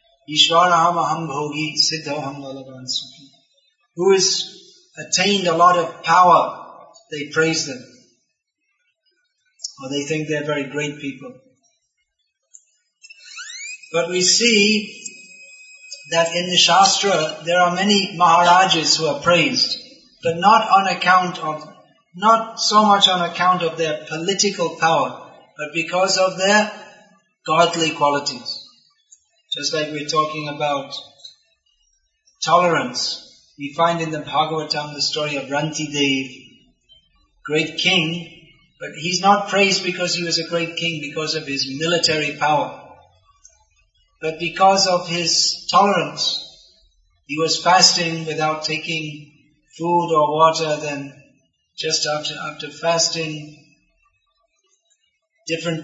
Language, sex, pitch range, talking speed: English, male, 150-190 Hz, 115 wpm